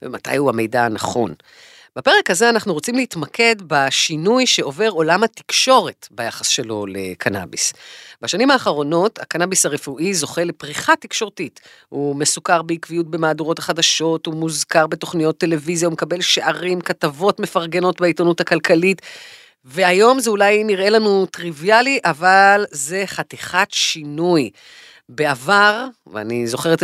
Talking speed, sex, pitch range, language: 115 wpm, female, 150-200 Hz, Hebrew